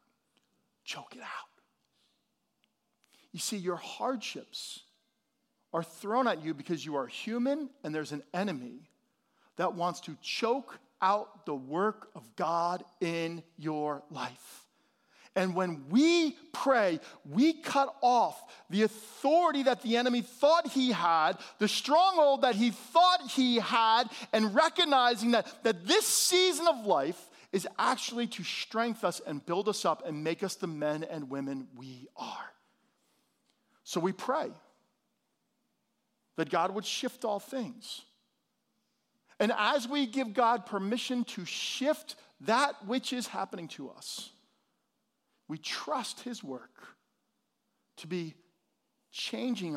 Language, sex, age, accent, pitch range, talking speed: English, male, 40-59, American, 180-255 Hz, 130 wpm